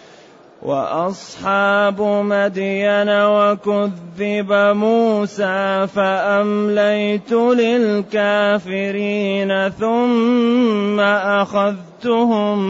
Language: Arabic